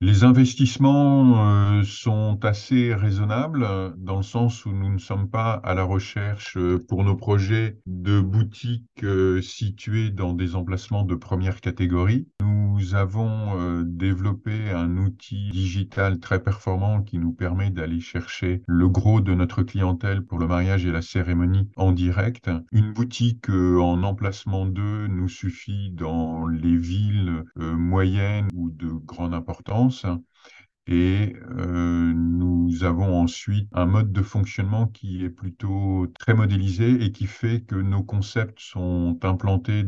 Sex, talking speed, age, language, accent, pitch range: male, 145 wpm, 50-69, French, French, 90-110 Hz